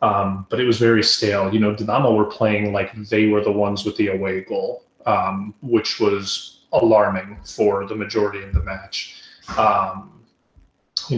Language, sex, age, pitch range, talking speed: English, male, 30-49, 100-115 Hz, 170 wpm